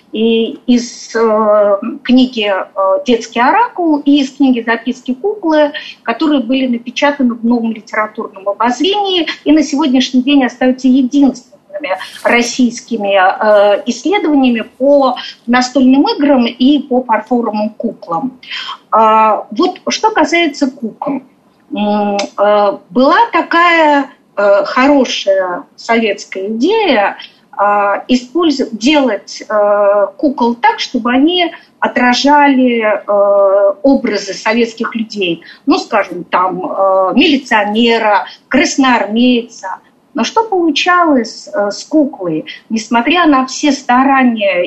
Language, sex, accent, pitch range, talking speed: Russian, female, native, 220-290 Hz, 90 wpm